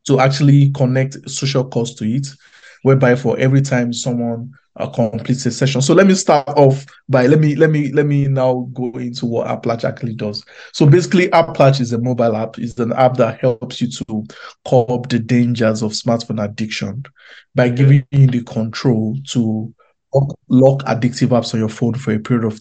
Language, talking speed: English, 185 wpm